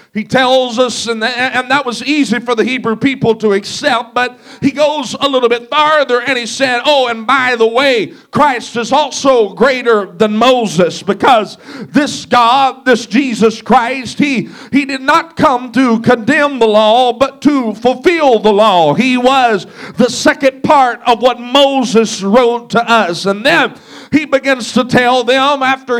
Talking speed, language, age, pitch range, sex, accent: 170 wpm, English, 50-69, 230-275 Hz, male, American